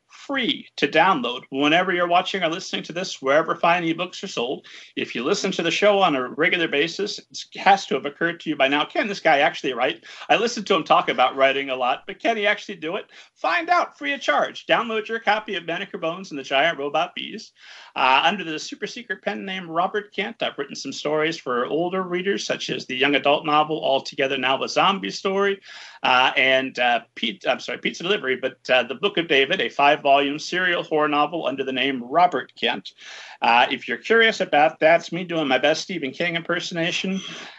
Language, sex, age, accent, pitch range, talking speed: English, male, 40-59, American, 140-195 Hz, 220 wpm